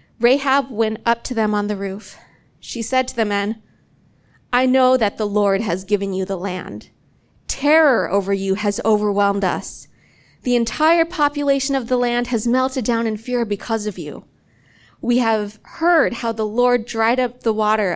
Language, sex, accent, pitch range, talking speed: English, female, American, 210-265 Hz, 175 wpm